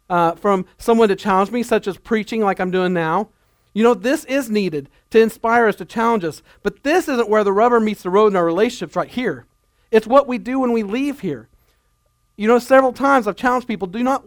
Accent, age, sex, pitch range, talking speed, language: American, 40-59, male, 175-245 Hz, 230 wpm, English